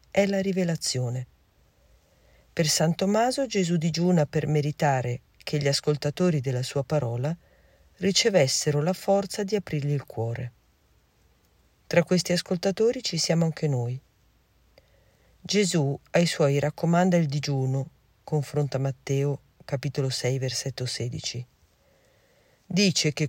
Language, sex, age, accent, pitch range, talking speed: Italian, female, 50-69, native, 135-175 Hz, 115 wpm